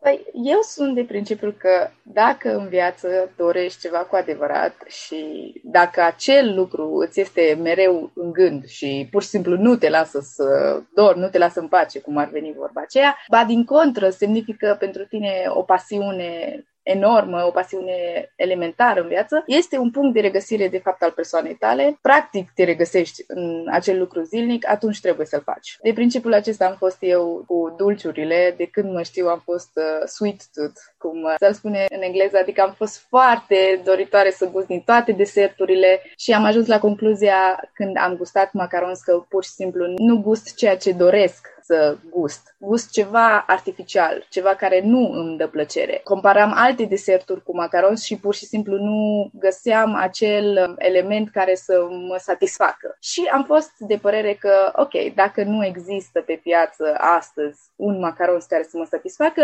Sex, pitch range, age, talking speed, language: female, 175-215 Hz, 20-39, 175 wpm, Romanian